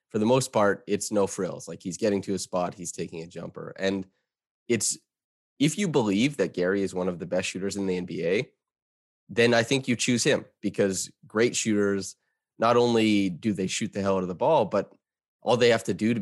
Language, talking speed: English, 220 wpm